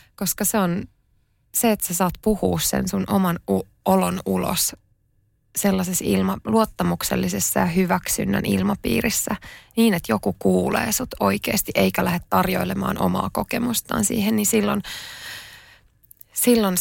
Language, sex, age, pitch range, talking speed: Finnish, female, 20-39, 165-215 Hz, 125 wpm